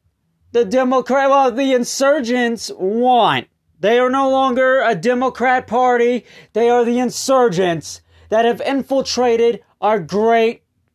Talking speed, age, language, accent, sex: 120 wpm, 30-49, English, American, male